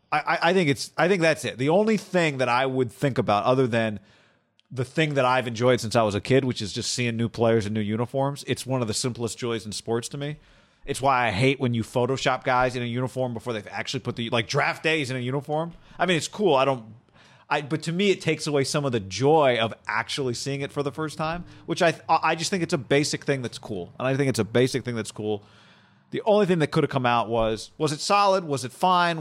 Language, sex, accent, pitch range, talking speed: English, male, American, 115-155 Hz, 265 wpm